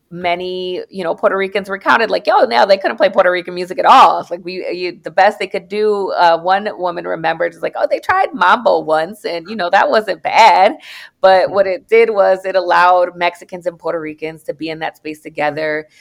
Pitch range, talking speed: 175-215 Hz, 220 wpm